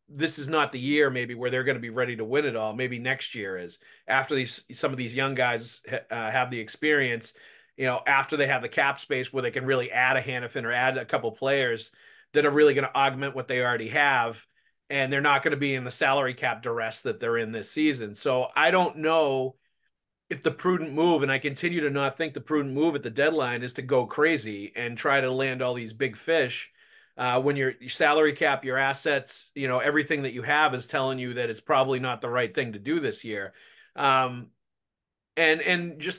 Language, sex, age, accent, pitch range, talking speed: English, male, 40-59, American, 125-150 Hz, 235 wpm